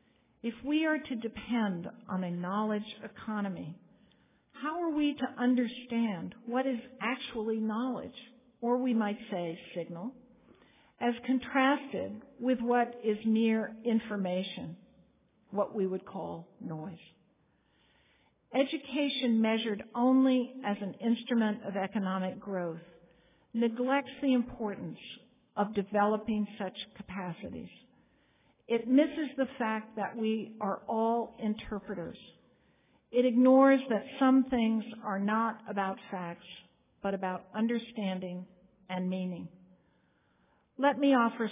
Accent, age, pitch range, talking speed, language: American, 60-79, 195-245 Hz, 110 wpm, English